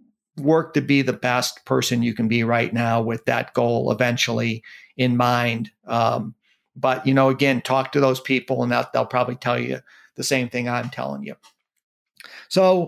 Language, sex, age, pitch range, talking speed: English, male, 50-69, 125-145 Hz, 175 wpm